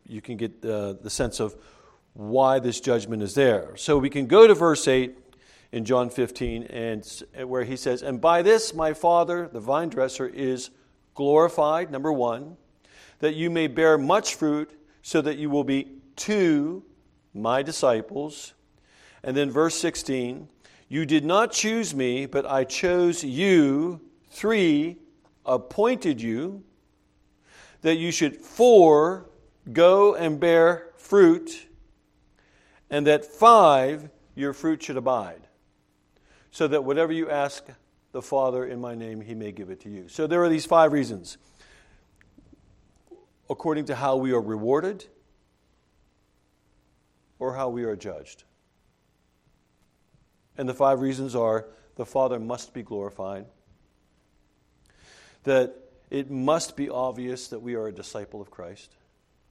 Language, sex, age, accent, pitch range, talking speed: English, male, 50-69, American, 115-160 Hz, 140 wpm